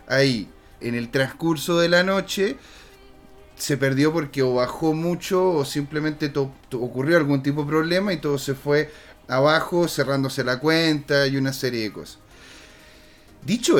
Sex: male